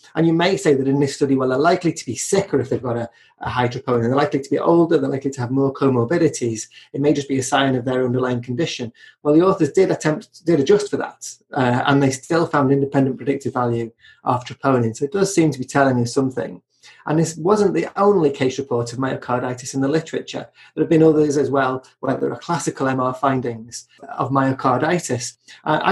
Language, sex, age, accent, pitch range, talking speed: English, male, 30-49, British, 130-160 Hz, 225 wpm